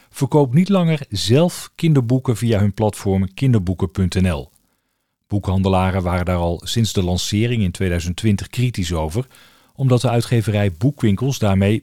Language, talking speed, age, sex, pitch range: Dutch, 125 wpm, 40-59, male, 95-130 Hz